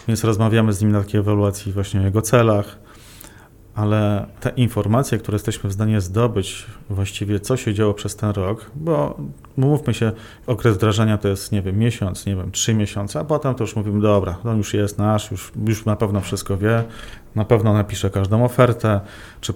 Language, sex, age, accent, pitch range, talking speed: Polish, male, 40-59, native, 100-110 Hz, 195 wpm